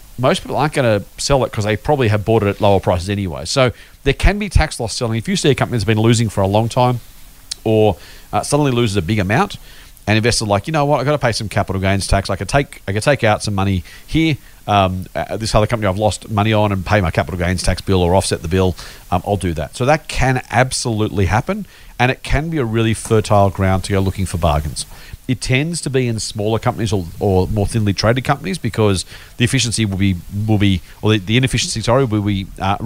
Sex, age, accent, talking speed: male, 40-59, Australian, 250 wpm